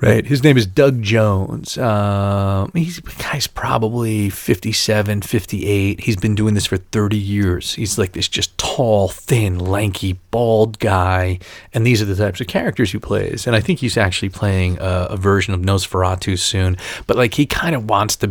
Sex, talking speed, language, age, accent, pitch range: male, 195 wpm, English, 40-59, American, 95-130 Hz